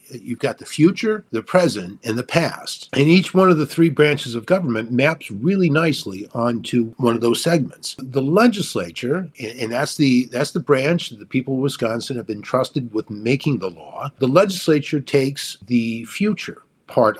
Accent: American